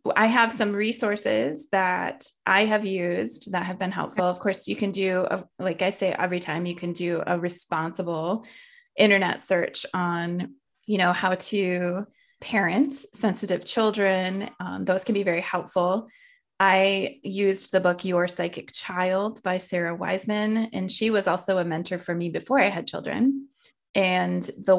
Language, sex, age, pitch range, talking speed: English, female, 20-39, 175-210 Hz, 165 wpm